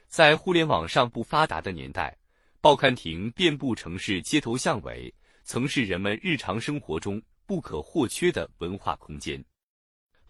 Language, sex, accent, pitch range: Chinese, male, native, 95-150 Hz